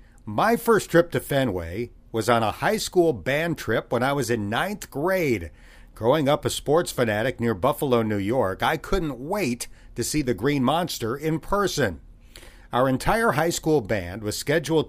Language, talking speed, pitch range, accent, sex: English, 175 wpm, 115-160 Hz, American, male